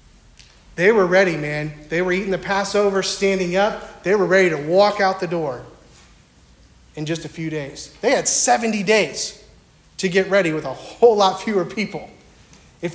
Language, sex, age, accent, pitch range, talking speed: English, male, 40-59, American, 180-225 Hz, 175 wpm